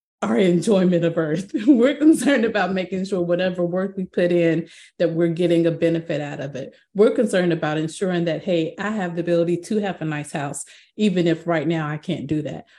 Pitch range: 165-195 Hz